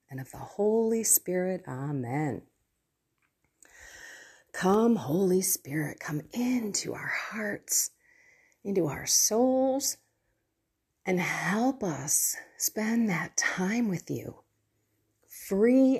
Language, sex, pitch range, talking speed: English, female, 160-245 Hz, 95 wpm